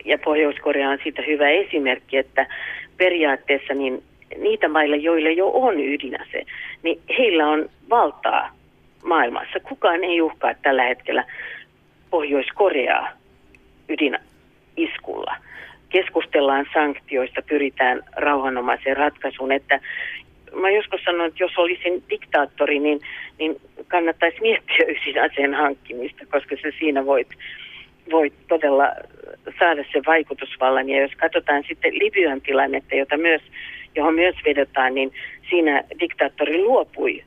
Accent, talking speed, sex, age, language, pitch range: native, 110 wpm, female, 40-59, Finnish, 140-180 Hz